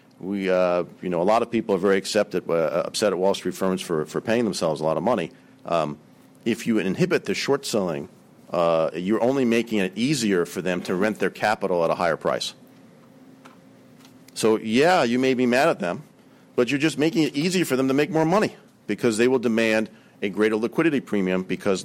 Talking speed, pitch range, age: 210 wpm, 100-120 Hz, 40-59